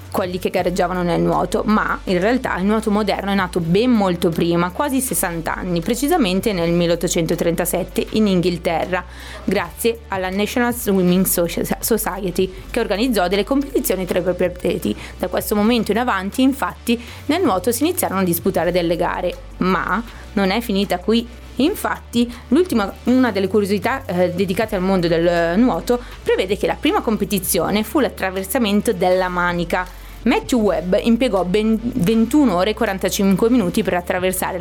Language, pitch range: Italian, 180-230 Hz